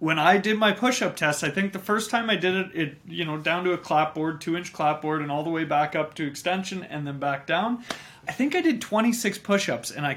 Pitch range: 150-190 Hz